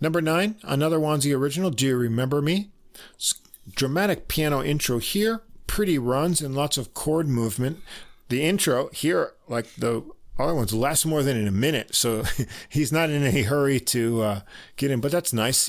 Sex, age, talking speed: male, 50-69, 175 wpm